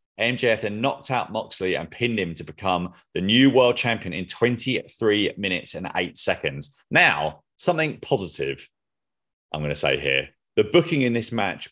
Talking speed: 165 wpm